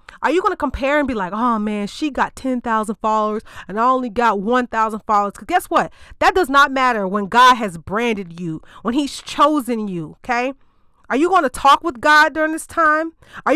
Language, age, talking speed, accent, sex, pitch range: English, 30-49, 215 wpm, American, female, 215-300 Hz